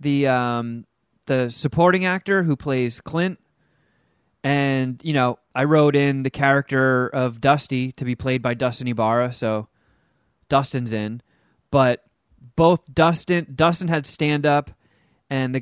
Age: 20-39